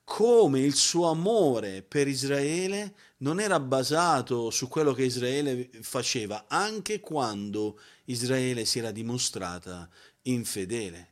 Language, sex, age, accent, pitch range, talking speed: Italian, male, 40-59, native, 120-160 Hz, 115 wpm